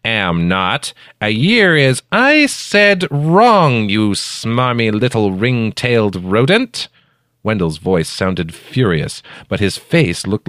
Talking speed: 120 wpm